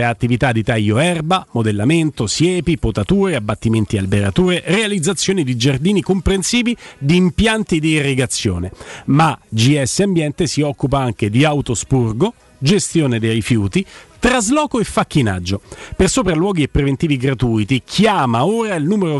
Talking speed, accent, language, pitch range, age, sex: 130 wpm, native, Italian, 135-190 Hz, 40-59, male